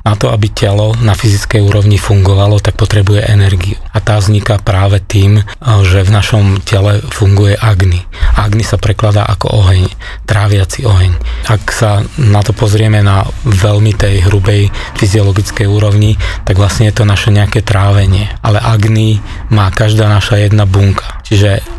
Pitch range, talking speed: 100-110 Hz, 150 wpm